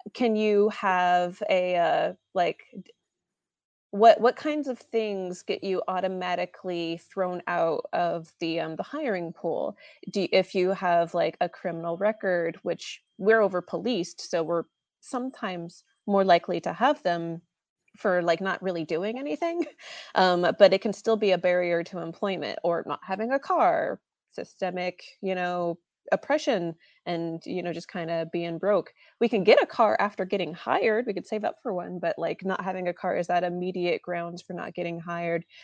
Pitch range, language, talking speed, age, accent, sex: 170-205 Hz, English, 175 wpm, 20-39, American, female